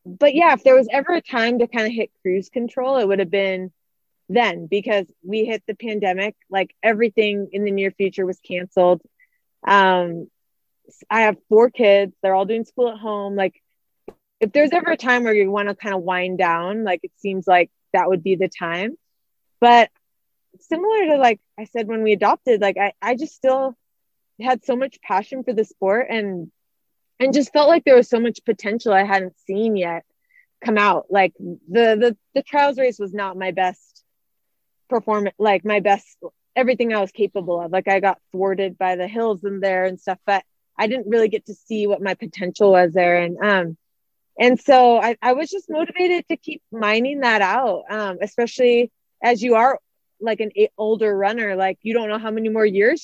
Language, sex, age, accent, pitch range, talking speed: English, female, 20-39, American, 195-245 Hz, 200 wpm